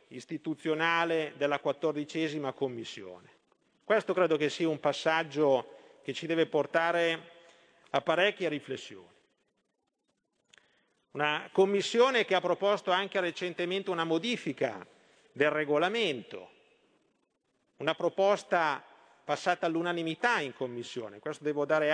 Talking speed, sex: 100 wpm, male